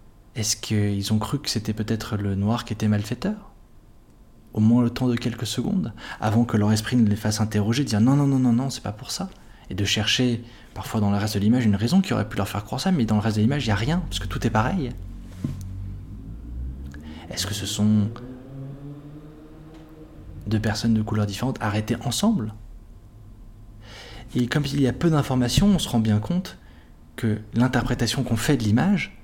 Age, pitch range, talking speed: 20-39, 105-125 Hz, 205 wpm